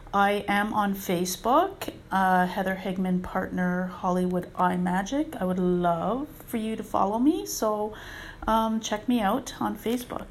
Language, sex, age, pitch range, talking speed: English, female, 30-49, 185-220 Hz, 150 wpm